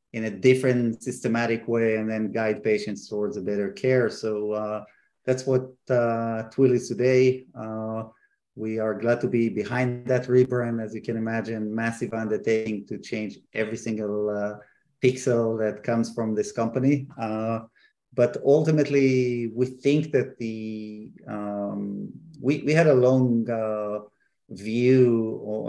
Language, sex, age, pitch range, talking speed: English, male, 30-49, 110-120 Hz, 150 wpm